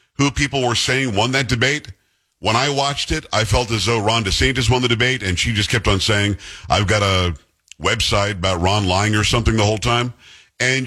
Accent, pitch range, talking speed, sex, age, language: American, 100-130 Hz, 215 wpm, male, 50-69, English